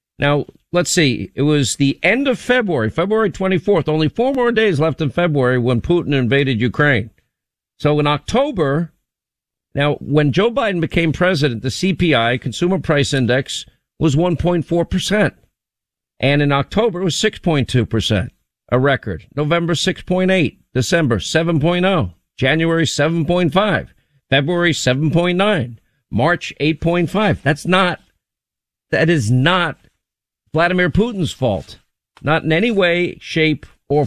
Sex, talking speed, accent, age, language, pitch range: male, 125 wpm, American, 50-69, English, 135-175 Hz